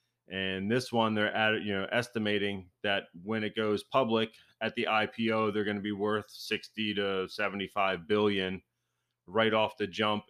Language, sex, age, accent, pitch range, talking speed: English, male, 30-49, American, 95-115 Hz, 170 wpm